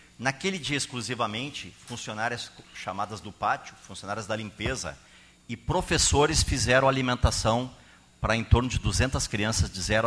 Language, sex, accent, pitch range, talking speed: Portuguese, male, Brazilian, 110-145 Hz, 130 wpm